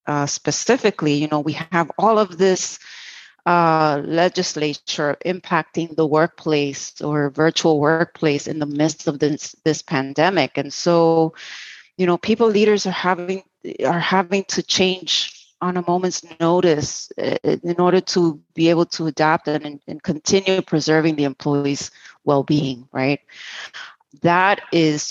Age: 30-49